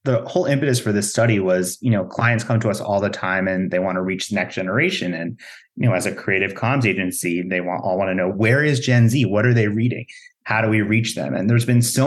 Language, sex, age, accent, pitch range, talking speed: English, male, 30-49, American, 95-120 Hz, 270 wpm